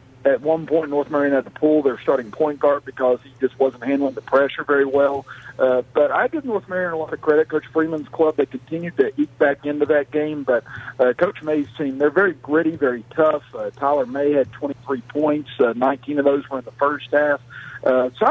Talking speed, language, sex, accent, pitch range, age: 225 wpm, English, male, American, 125-150 Hz, 50-69